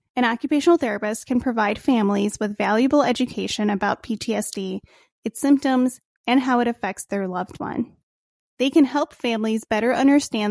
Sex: female